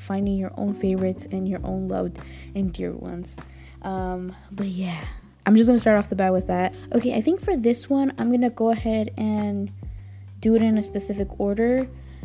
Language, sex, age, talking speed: English, female, 10-29, 195 wpm